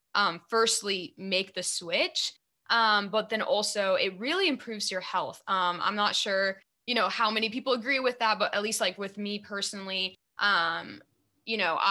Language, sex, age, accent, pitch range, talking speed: English, female, 10-29, American, 180-215 Hz, 180 wpm